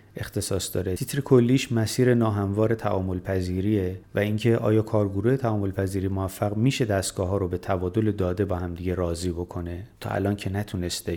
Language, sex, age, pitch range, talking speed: Persian, male, 30-49, 95-115 Hz, 160 wpm